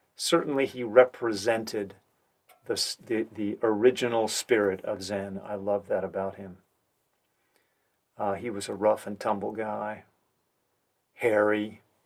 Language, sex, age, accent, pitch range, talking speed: English, male, 40-59, American, 100-115 Hz, 120 wpm